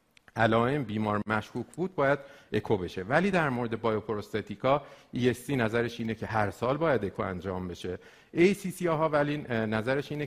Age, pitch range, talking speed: 50-69, 105-140 Hz, 160 wpm